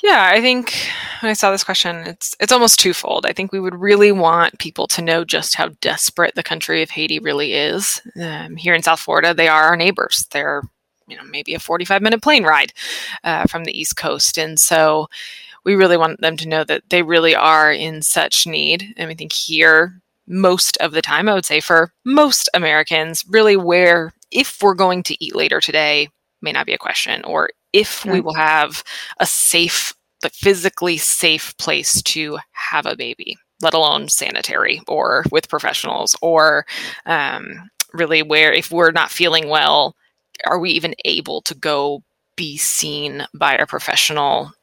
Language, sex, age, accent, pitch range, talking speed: English, female, 20-39, American, 160-190 Hz, 180 wpm